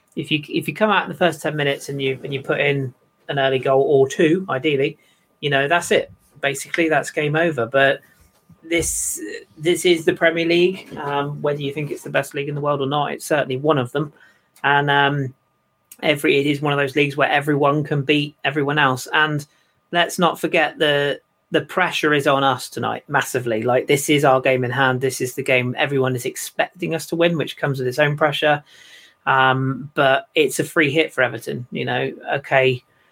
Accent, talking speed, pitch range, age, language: British, 210 wpm, 125-150 Hz, 30-49, English